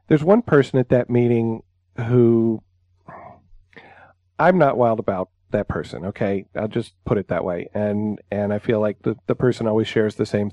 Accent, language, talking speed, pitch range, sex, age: American, English, 180 wpm, 95-125 Hz, male, 40-59